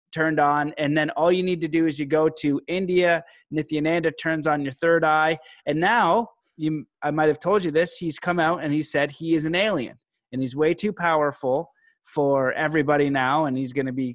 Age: 30-49